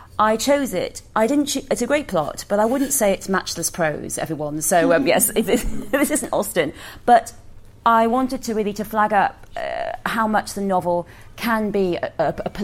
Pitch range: 170-205 Hz